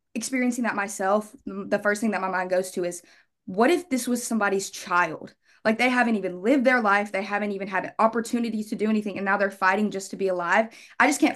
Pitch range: 190-230 Hz